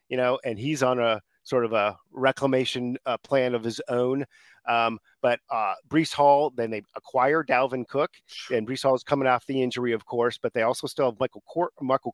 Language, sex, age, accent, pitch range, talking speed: English, male, 40-59, American, 120-140 Hz, 205 wpm